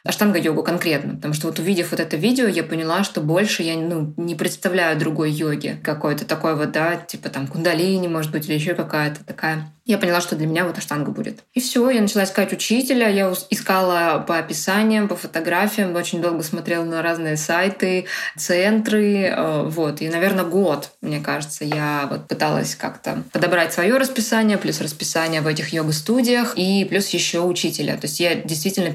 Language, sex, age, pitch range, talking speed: Russian, female, 20-39, 160-195 Hz, 180 wpm